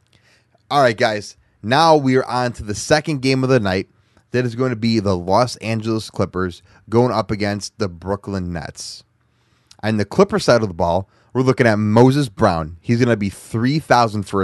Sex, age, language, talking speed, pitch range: male, 20-39, English, 190 wpm, 100-125 Hz